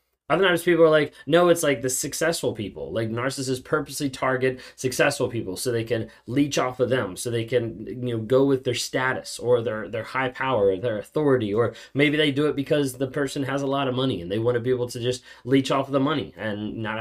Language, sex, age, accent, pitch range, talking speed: English, male, 20-39, American, 115-140 Hz, 245 wpm